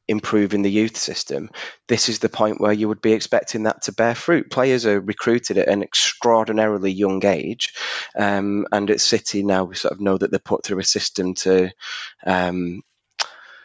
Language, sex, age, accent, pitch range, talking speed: English, male, 20-39, British, 100-120 Hz, 185 wpm